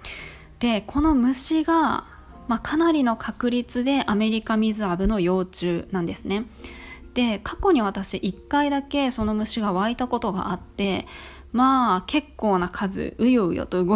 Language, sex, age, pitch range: Japanese, female, 20-39, 185-245 Hz